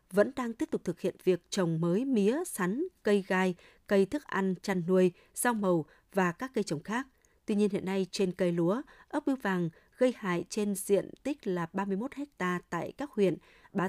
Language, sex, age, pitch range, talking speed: Vietnamese, female, 20-39, 180-235 Hz, 205 wpm